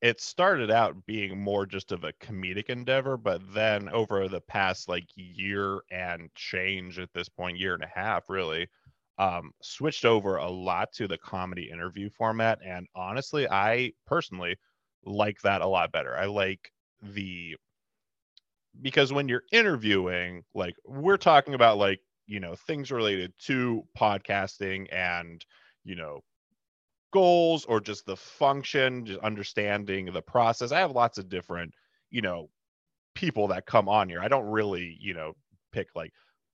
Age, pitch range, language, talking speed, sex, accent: 20-39, 95-125 Hz, English, 155 wpm, male, American